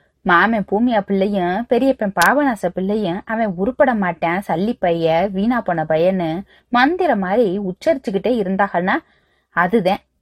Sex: female